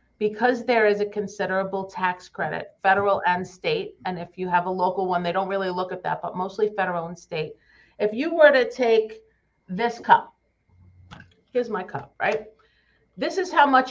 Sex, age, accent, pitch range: female, 50-69, American, 180-235 Hz